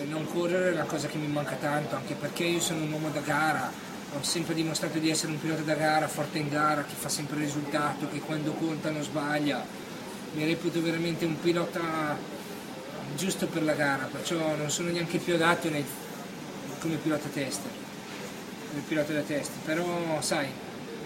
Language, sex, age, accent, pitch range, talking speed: Italian, male, 20-39, native, 145-160 Hz, 180 wpm